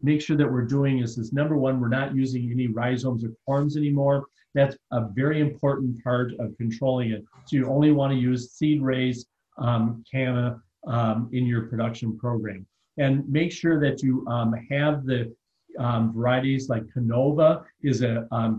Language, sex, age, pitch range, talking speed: English, male, 50-69, 115-140 Hz, 180 wpm